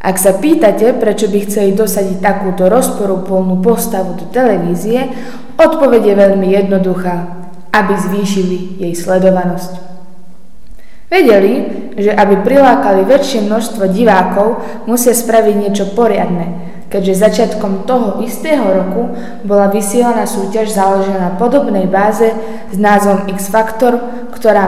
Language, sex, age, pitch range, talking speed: Slovak, female, 20-39, 190-235 Hz, 115 wpm